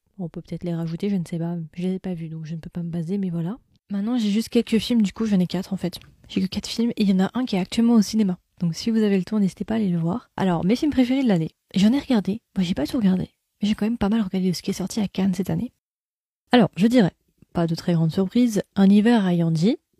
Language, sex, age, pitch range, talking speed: French, female, 20-39, 175-215 Hz, 310 wpm